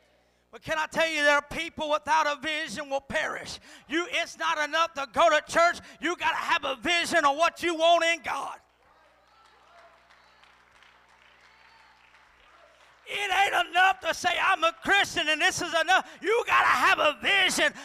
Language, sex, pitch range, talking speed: English, male, 215-330 Hz, 170 wpm